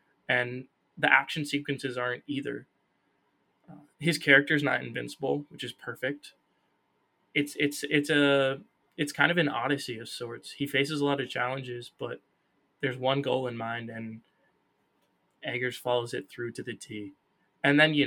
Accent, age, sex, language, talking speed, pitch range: American, 20-39, male, English, 155 wpm, 120-145 Hz